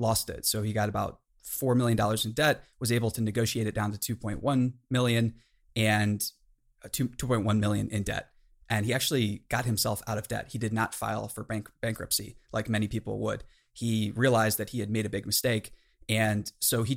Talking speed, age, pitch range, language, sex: 190 wpm, 20-39, 110-125 Hz, English, male